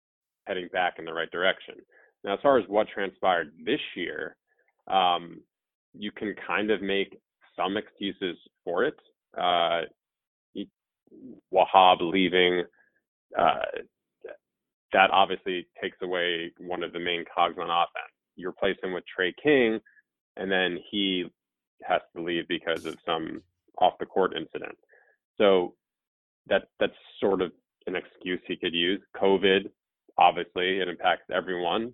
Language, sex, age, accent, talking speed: English, male, 20-39, American, 130 wpm